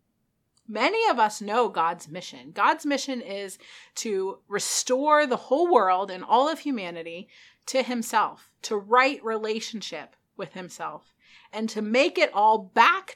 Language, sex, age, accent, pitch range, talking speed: English, female, 30-49, American, 205-285 Hz, 140 wpm